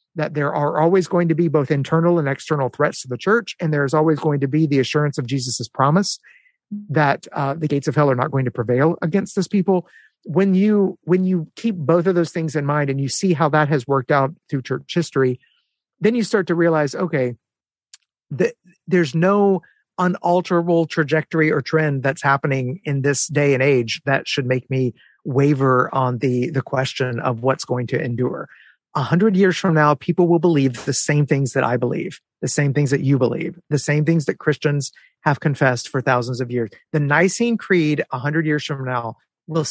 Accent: American